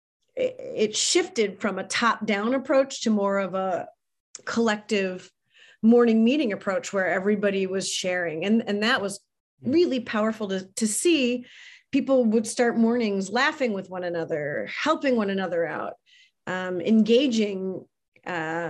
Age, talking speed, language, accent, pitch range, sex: 30-49, 135 wpm, English, American, 190-250 Hz, female